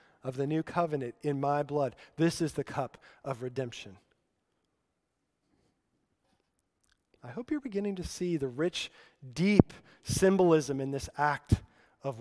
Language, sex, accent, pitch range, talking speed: English, male, American, 150-195 Hz, 135 wpm